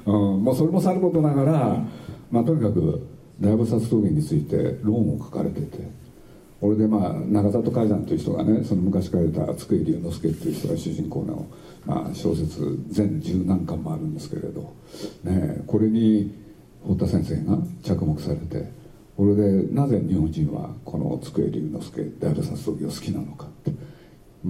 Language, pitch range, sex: Japanese, 100-140 Hz, male